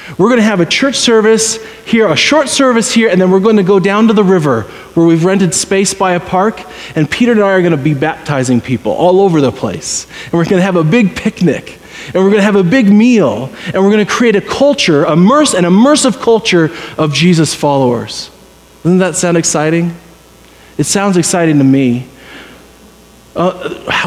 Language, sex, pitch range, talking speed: English, male, 165-225 Hz, 190 wpm